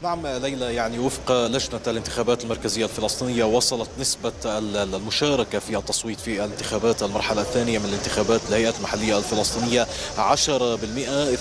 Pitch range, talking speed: 115-135 Hz, 125 wpm